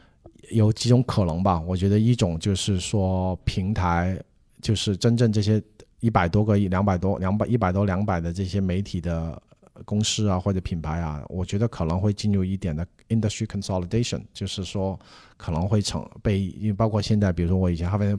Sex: male